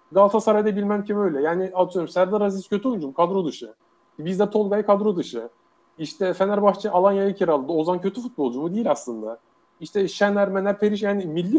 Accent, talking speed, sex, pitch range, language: Turkish, 175 wpm, male, 175-220 Hz, English